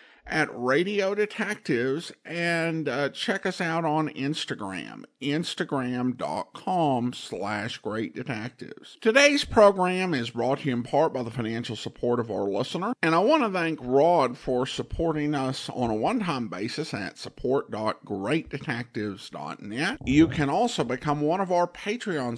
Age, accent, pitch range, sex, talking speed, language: 50-69, American, 120-175 Hz, male, 135 wpm, English